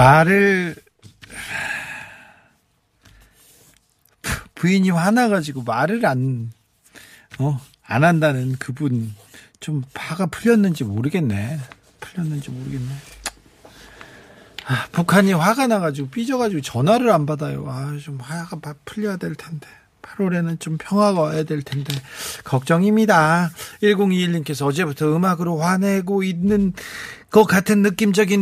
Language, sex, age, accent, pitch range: Korean, male, 40-59, native, 140-190 Hz